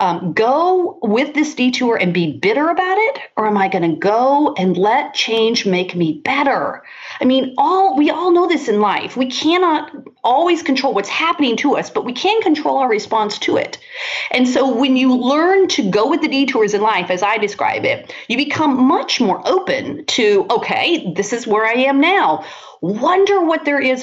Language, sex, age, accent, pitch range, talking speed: English, female, 40-59, American, 200-305 Hz, 200 wpm